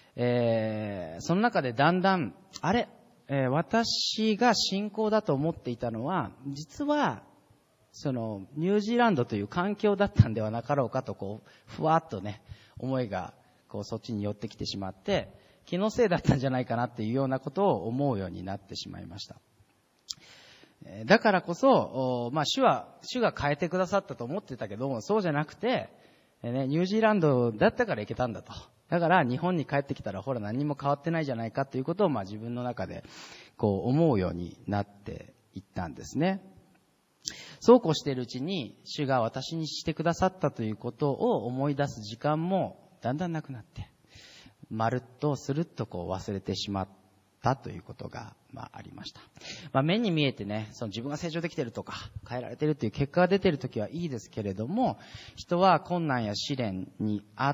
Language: Japanese